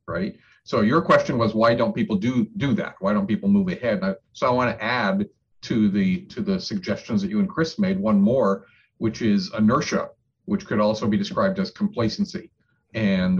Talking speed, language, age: 195 wpm, English, 50-69